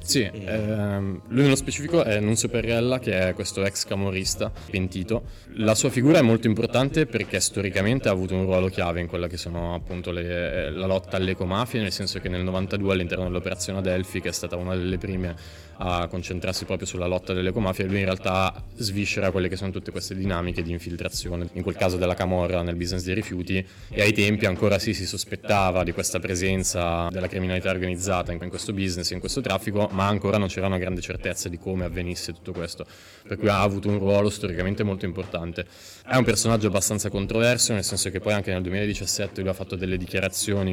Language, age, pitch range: Italian, 20-39, 90-100 Hz